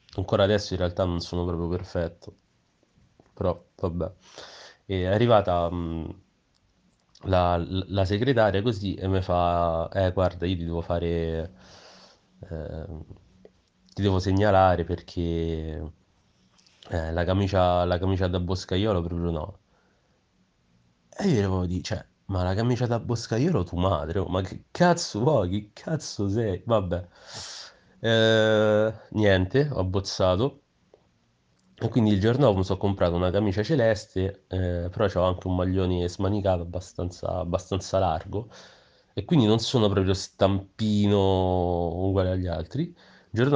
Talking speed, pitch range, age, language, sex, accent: 130 wpm, 90-105 Hz, 30-49, Italian, male, native